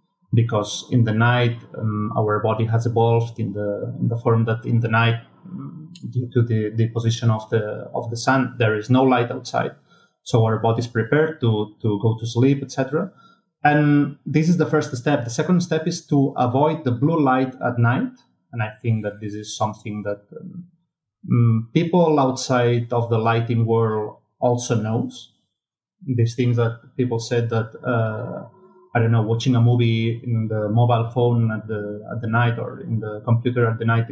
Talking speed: 190 wpm